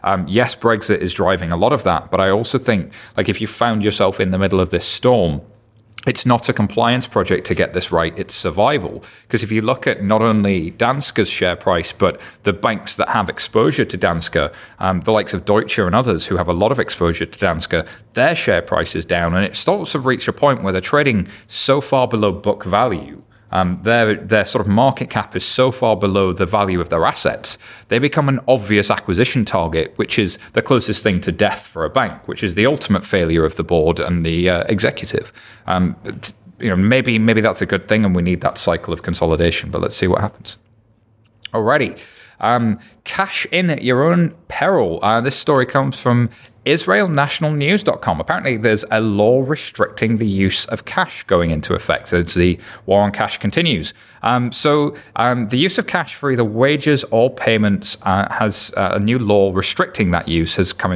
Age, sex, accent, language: 30-49, male, British, English